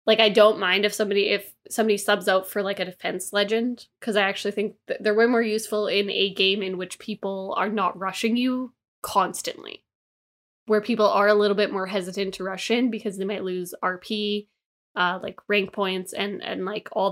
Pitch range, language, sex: 200-240 Hz, English, female